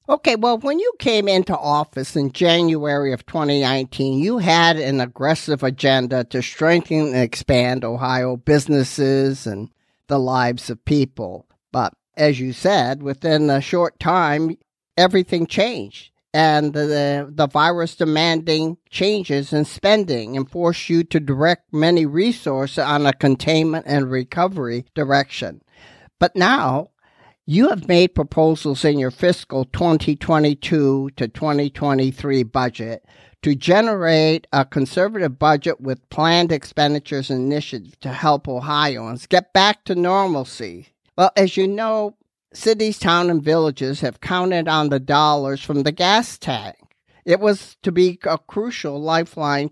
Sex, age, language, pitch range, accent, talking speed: male, 50-69, English, 135-170 Hz, American, 135 wpm